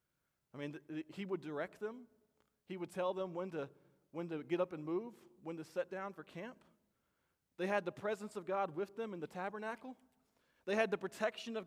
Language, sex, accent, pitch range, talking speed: English, male, American, 170-215 Hz, 200 wpm